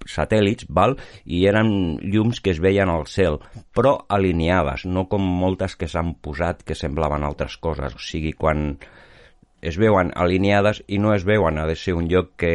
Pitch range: 80-100 Hz